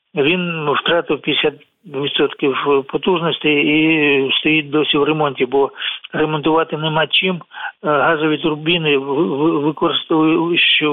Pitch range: 145-175 Hz